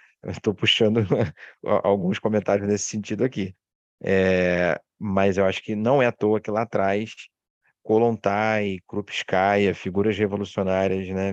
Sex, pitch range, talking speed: male, 95-105 Hz, 125 wpm